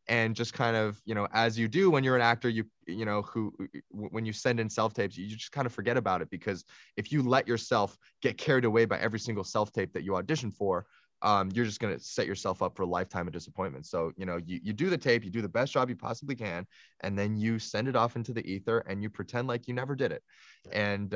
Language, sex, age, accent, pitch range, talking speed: English, male, 20-39, American, 100-130 Hz, 260 wpm